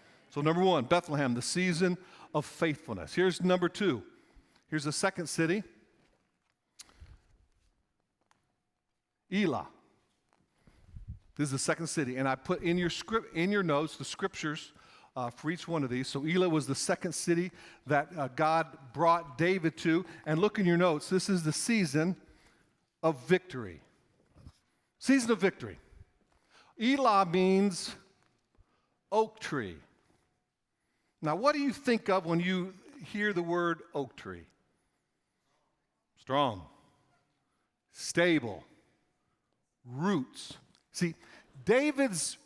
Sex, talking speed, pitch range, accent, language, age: male, 120 wpm, 155-200 Hz, American, English, 50-69